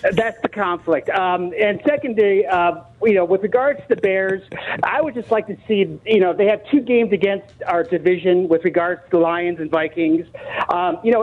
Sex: male